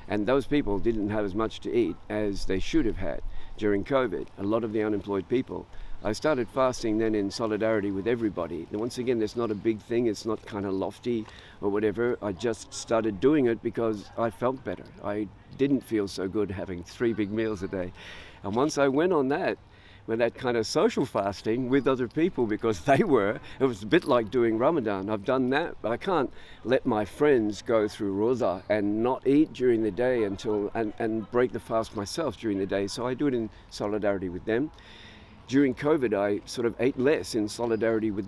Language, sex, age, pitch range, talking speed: English, male, 50-69, 100-125 Hz, 215 wpm